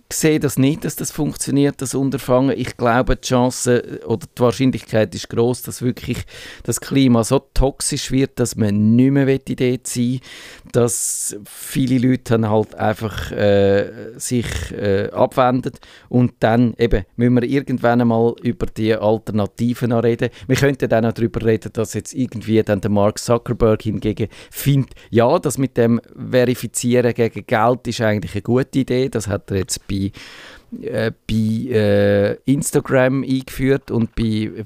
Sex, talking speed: male, 155 wpm